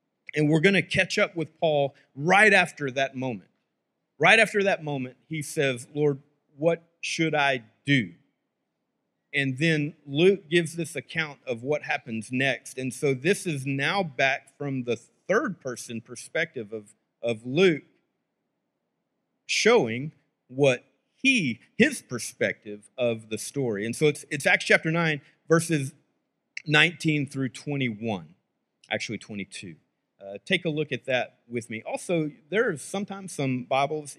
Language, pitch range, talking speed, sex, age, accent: English, 125-160 Hz, 145 wpm, male, 40-59, American